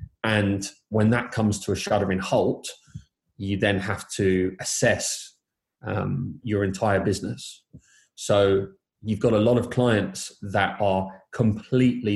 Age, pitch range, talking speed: 20-39, 95-115 Hz, 135 wpm